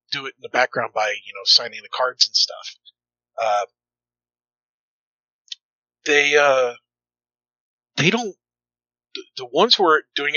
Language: English